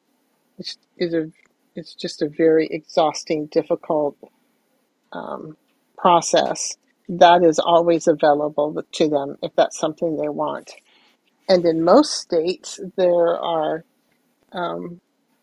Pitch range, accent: 165-205 Hz, American